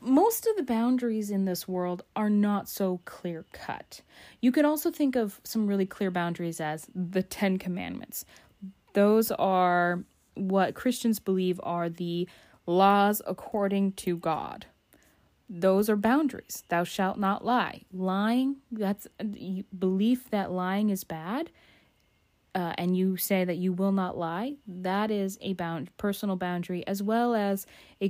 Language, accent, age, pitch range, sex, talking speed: English, American, 20-39, 180-225 Hz, female, 145 wpm